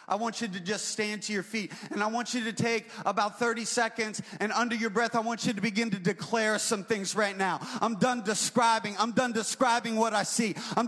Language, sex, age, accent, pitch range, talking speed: English, male, 30-49, American, 235-285 Hz, 235 wpm